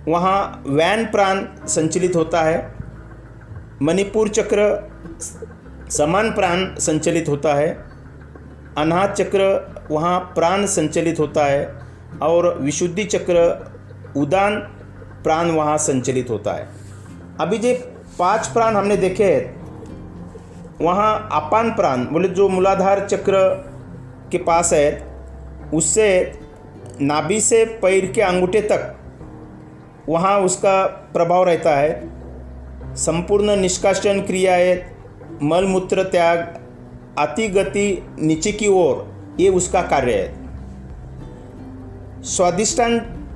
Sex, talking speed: male, 100 wpm